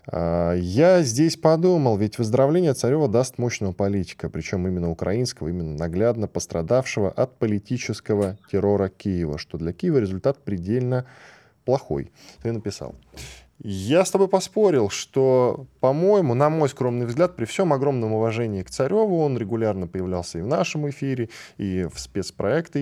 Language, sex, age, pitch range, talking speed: Russian, male, 10-29, 95-135 Hz, 140 wpm